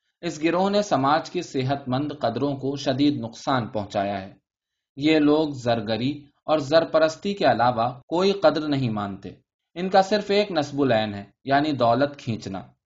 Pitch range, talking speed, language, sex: 120-155 Hz, 160 wpm, Urdu, male